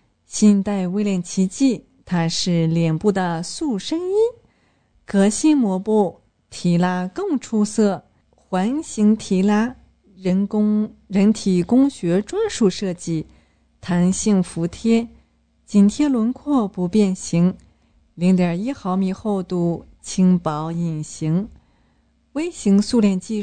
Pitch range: 175-225 Hz